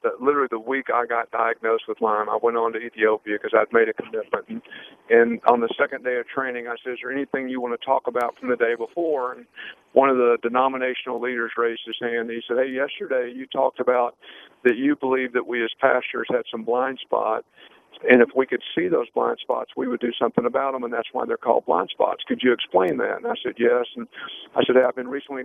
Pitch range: 120-155 Hz